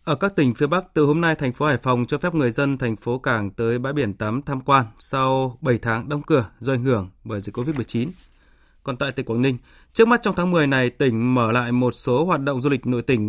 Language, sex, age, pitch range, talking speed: Vietnamese, male, 20-39, 120-150 Hz, 260 wpm